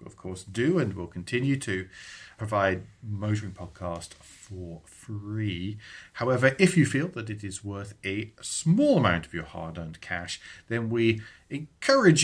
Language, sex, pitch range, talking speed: English, male, 95-130 Hz, 145 wpm